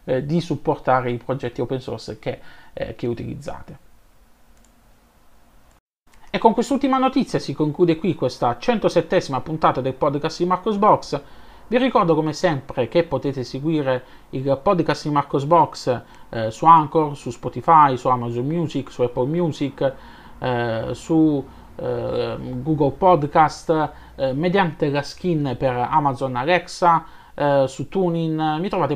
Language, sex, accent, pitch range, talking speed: Italian, male, native, 125-170 Hz, 135 wpm